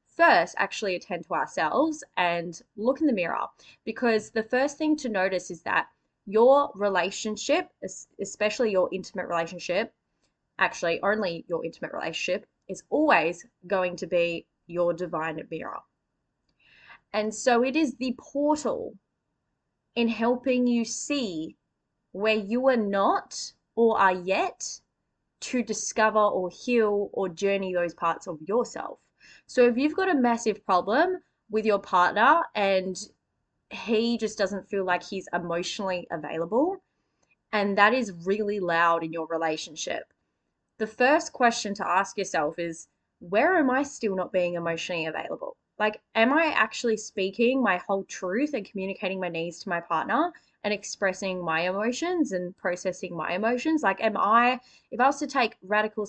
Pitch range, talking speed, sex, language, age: 180-240 Hz, 150 wpm, female, English, 20-39